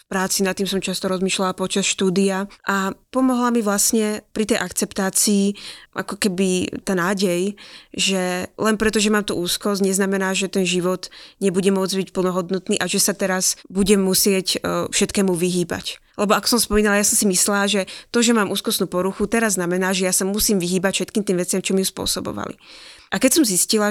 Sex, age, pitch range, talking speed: female, 20-39, 185-210 Hz, 185 wpm